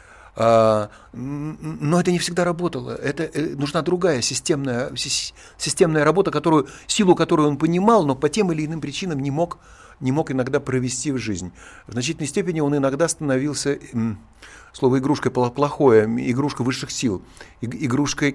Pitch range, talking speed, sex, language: 125-170 Hz, 140 wpm, male, Russian